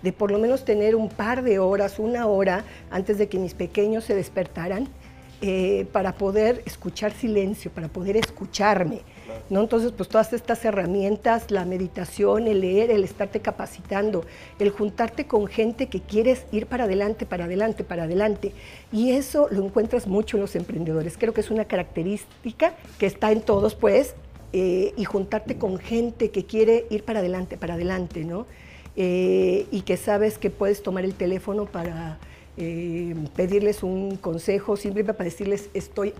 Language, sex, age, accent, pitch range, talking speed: Spanish, female, 50-69, American, 180-220 Hz, 165 wpm